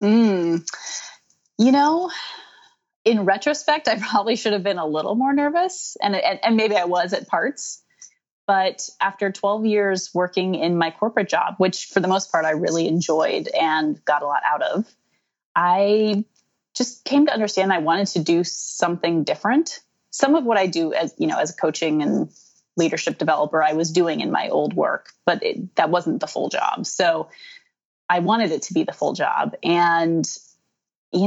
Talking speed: 180 wpm